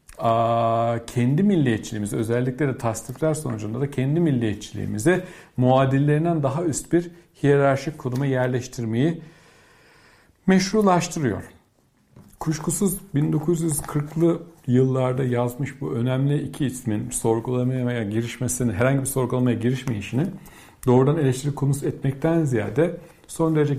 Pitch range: 120-160 Hz